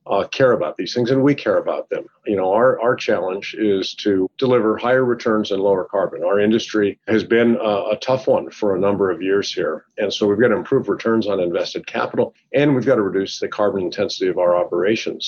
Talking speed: 230 wpm